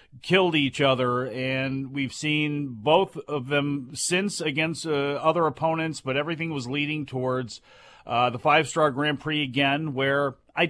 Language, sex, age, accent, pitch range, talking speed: English, male, 40-59, American, 135-165 Hz, 150 wpm